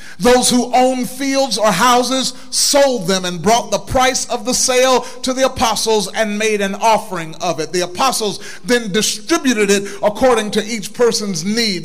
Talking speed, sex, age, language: 170 wpm, male, 40-59, English